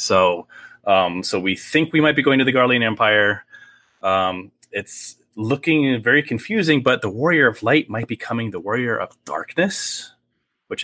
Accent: American